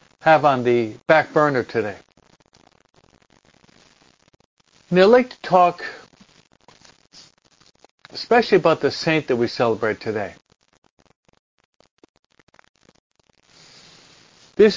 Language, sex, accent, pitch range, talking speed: English, male, American, 130-165 Hz, 80 wpm